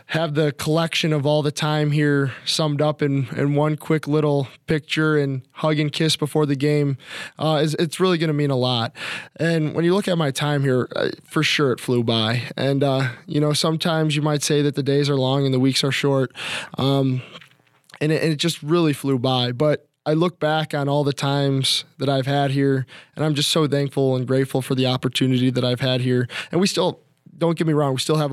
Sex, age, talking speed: male, 20-39, 230 wpm